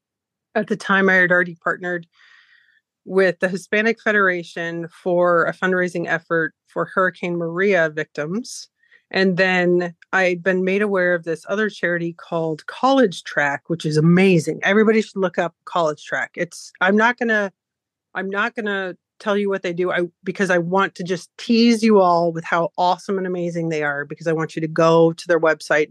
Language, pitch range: English, 165-200 Hz